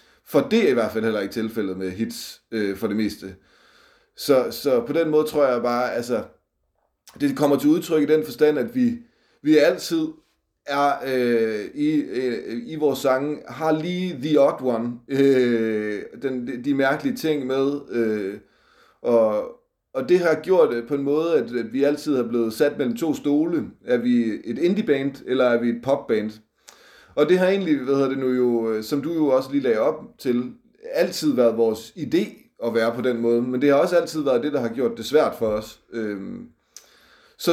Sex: male